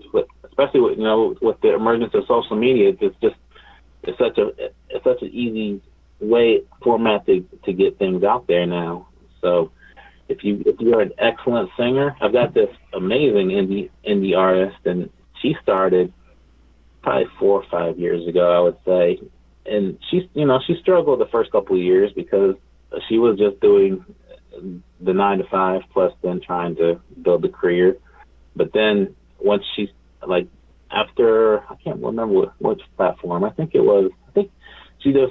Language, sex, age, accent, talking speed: English, male, 30-49, American, 175 wpm